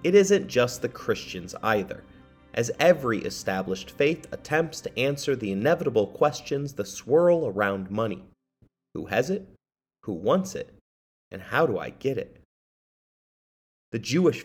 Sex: male